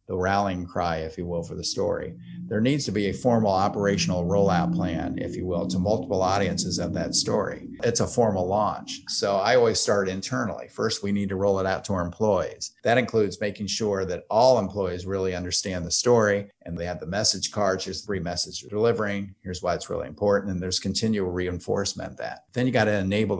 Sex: male